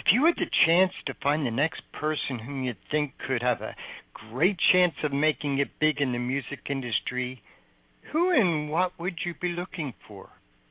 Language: English